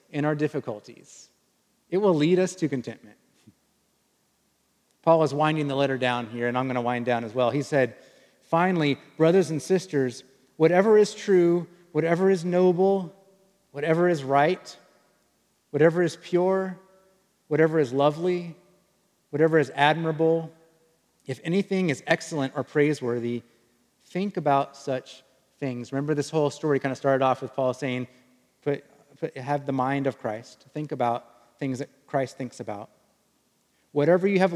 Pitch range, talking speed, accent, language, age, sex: 130-170 Hz, 150 wpm, American, English, 30-49, male